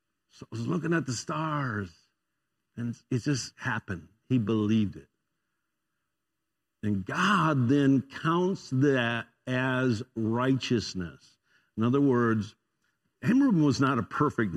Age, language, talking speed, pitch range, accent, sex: 60-79, English, 120 wpm, 110-150 Hz, American, male